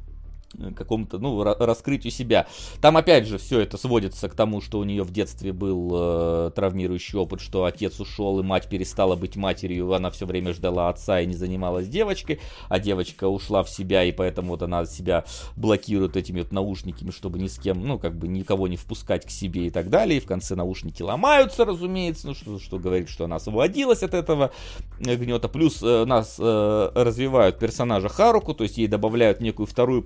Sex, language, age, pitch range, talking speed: male, Russian, 30-49, 95-120 Hz, 190 wpm